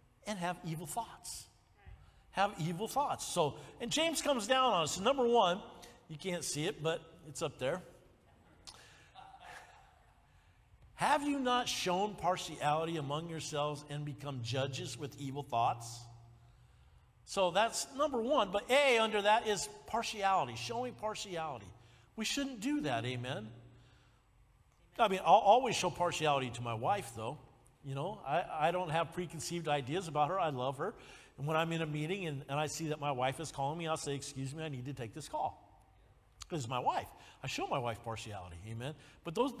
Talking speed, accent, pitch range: 175 wpm, American, 140-195 Hz